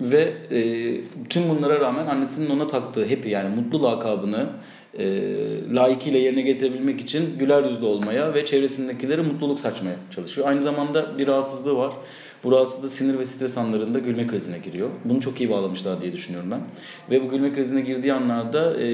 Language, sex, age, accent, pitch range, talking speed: Turkish, male, 40-59, native, 115-140 Hz, 170 wpm